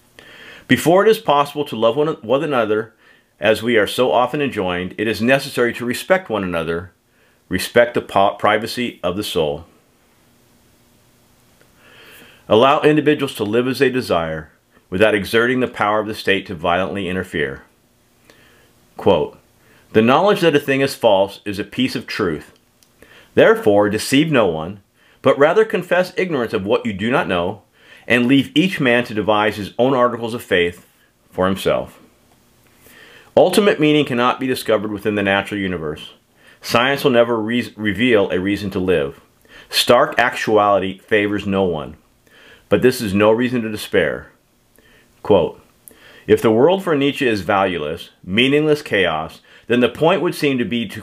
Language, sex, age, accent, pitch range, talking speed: English, male, 40-59, American, 100-135 Hz, 155 wpm